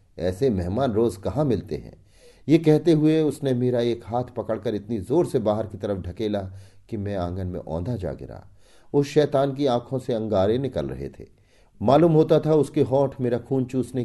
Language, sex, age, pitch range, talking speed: Hindi, male, 40-59, 95-150 Hz, 190 wpm